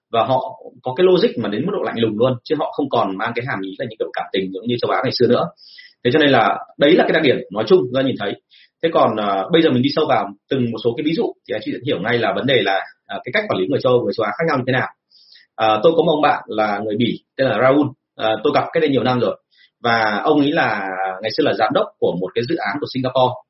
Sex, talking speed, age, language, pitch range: male, 315 wpm, 30-49, Vietnamese, 115-165 Hz